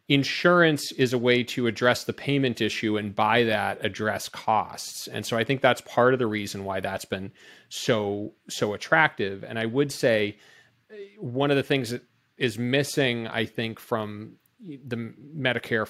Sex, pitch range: male, 105-125 Hz